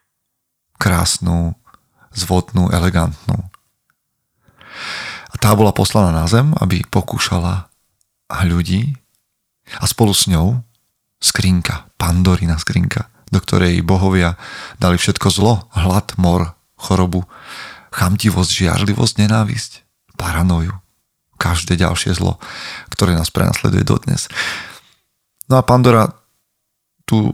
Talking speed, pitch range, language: 95 wpm, 90-115 Hz, Slovak